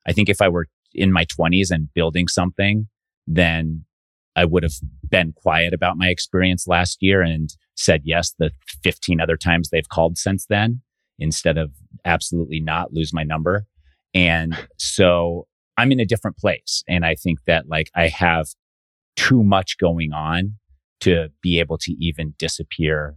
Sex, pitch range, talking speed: male, 80-90 Hz, 165 wpm